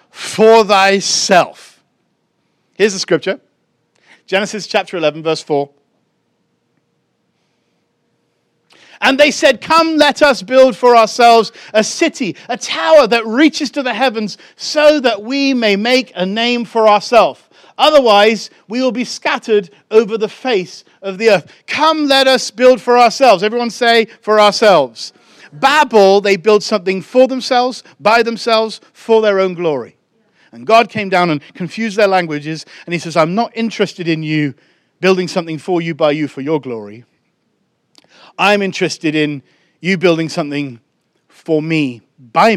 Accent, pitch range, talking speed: British, 165-235 Hz, 145 wpm